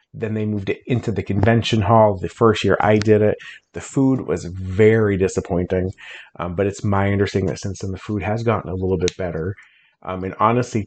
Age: 30-49